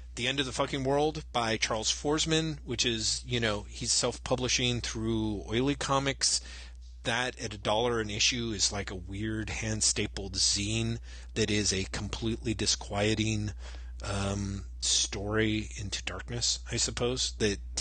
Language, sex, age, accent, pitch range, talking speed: English, male, 30-49, American, 95-120 Hz, 145 wpm